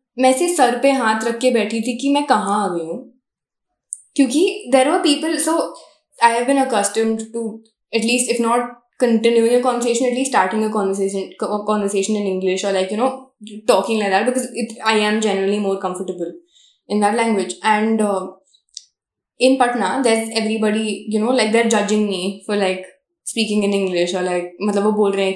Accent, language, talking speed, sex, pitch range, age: native, Hindi, 155 wpm, female, 210-260 Hz, 10-29